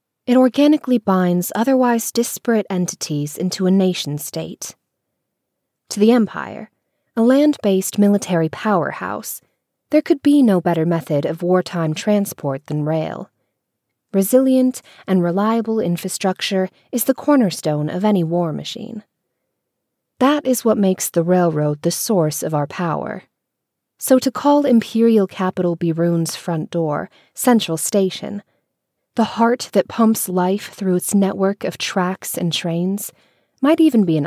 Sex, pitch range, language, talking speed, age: female, 165-230 Hz, English, 130 wpm, 20-39